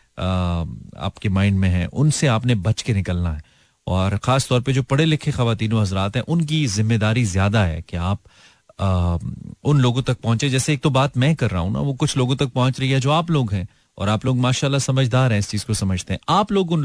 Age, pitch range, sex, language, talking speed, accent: 30-49, 100-125 Hz, male, Hindi, 230 wpm, native